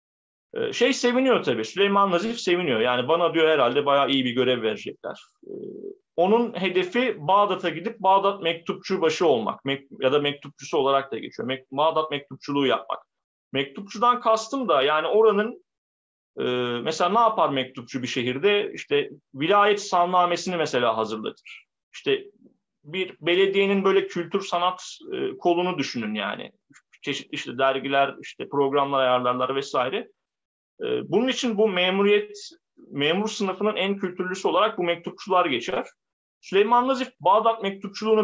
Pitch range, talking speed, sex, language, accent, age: 135-220 Hz, 135 wpm, male, Turkish, native, 40-59